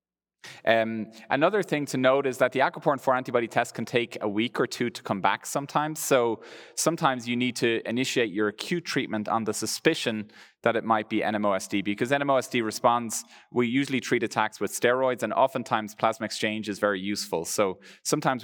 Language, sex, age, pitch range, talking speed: English, male, 30-49, 110-130 Hz, 180 wpm